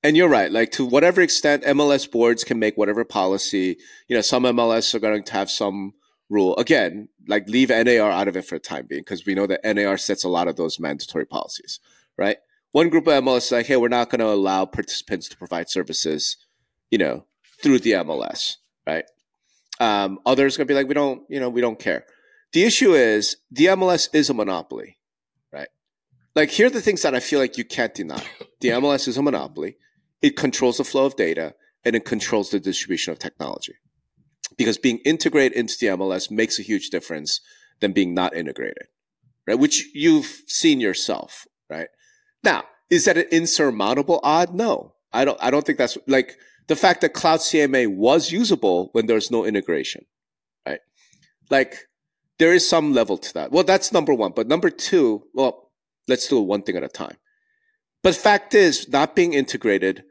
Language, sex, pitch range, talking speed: English, male, 110-175 Hz, 195 wpm